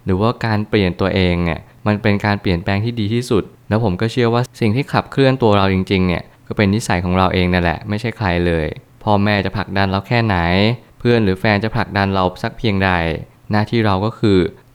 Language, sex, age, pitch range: Thai, male, 20-39, 95-115 Hz